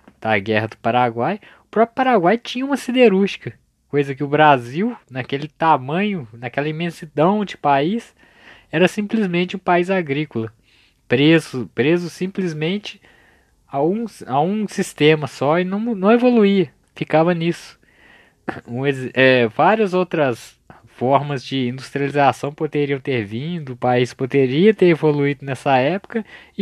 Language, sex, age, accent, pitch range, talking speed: Portuguese, male, 20-39, Brazilian, 130-190 Hz, 125 wpm